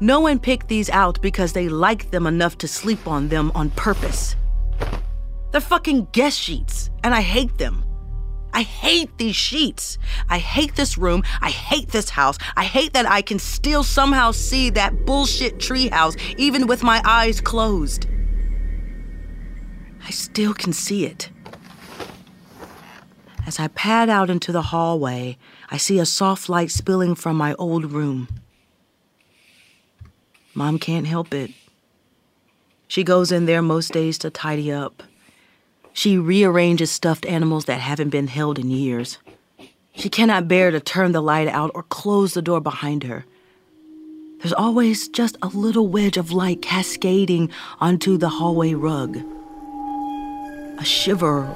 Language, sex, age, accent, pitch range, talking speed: English, female, 40-59, American, 150-220 Hz, 150 wpm